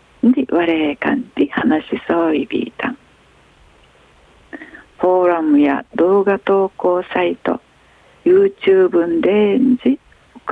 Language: Japanese